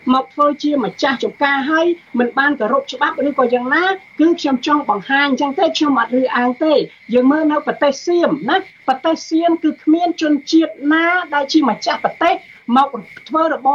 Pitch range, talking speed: 280-330 Hz, 115 wpm